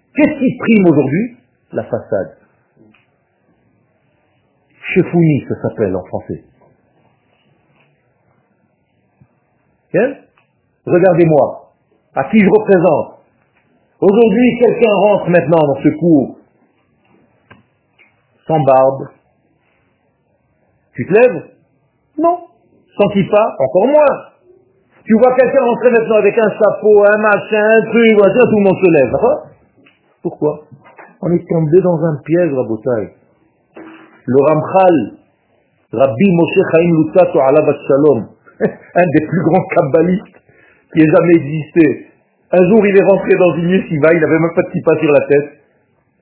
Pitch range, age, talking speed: 135-205 Hz, 50-69, 125 wpm